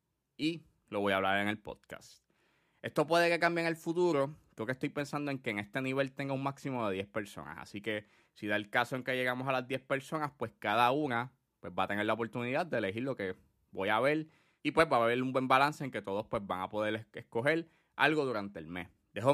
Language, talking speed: Spanish, 240 wpm